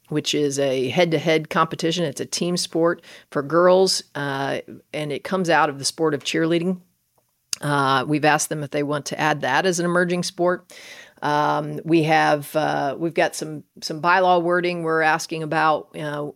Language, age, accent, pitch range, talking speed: English, 40-59, American, 145-170 Hz, 180 wpm